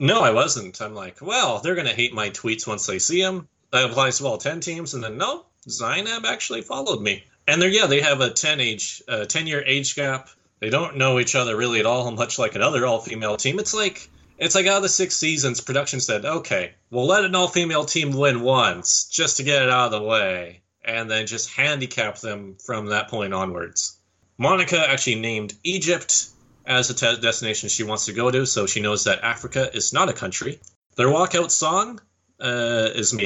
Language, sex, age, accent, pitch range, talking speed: English, male, 30-49, American, 105-145 Hz, 215 wpm